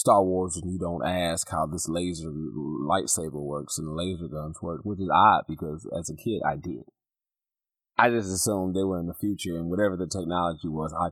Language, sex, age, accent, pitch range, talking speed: English, male, 30-49, American, 80-95 Hz, 205 wpm